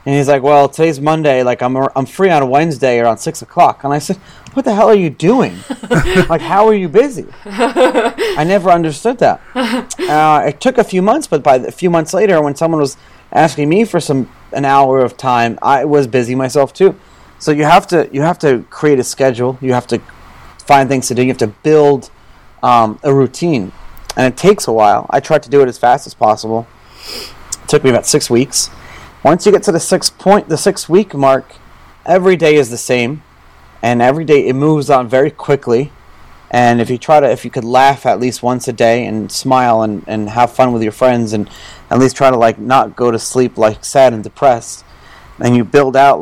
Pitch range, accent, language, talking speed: 120-155 Hz, American, English, 220 wpm